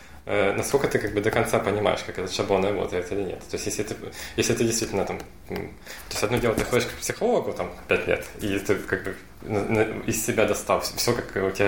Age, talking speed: 20-39, 220 wpm